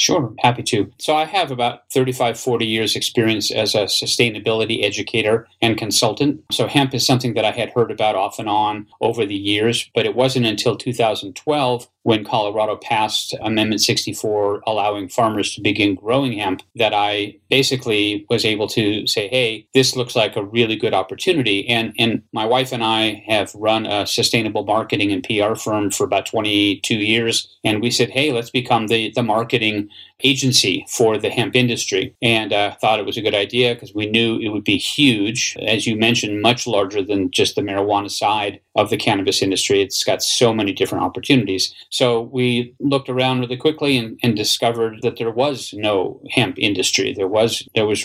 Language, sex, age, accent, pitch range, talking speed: English, male, 30-49, American, 105-125 Hz, 185 wpm